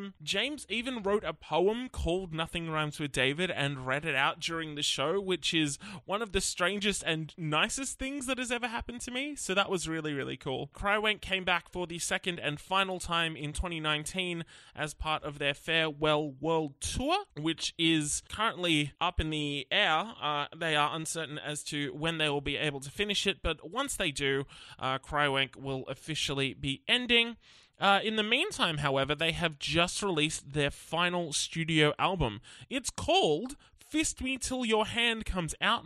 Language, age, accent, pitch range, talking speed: English, 20-39, Australian, 150-195 Hz, 180 wpm